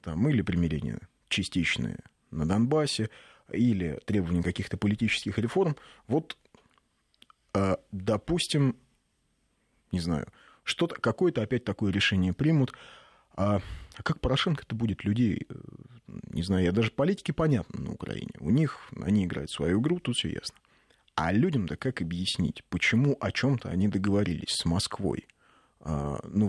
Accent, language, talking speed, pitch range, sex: native, Russian, 130 wpm, 95-125 Hz, male